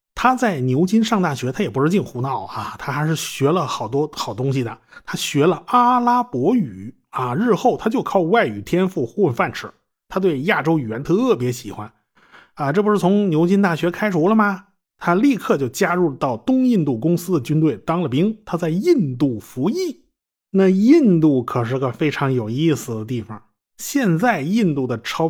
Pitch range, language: 130-195 Hz, Chinese